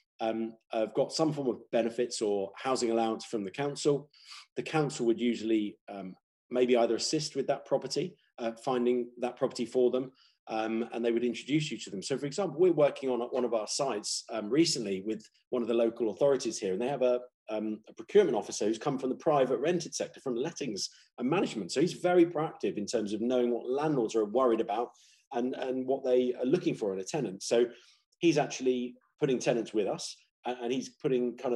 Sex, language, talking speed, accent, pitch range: male, Swedish, 210 wpm, British, 115-140 Hz